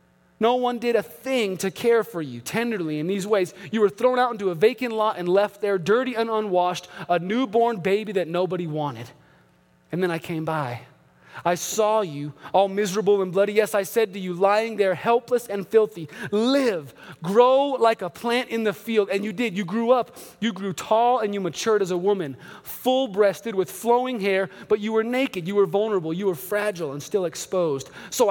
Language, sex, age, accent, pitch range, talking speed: English, male, 30-49, American, 185-230 Hz, 205 wpm